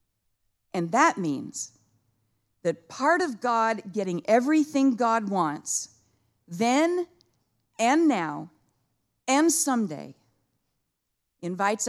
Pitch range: 155-245 Hz